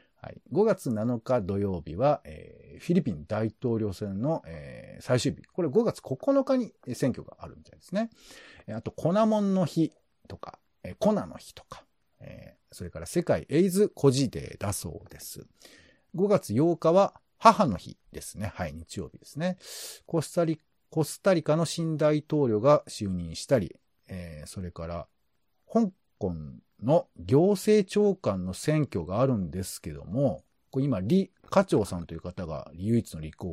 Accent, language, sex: native, Japanese, male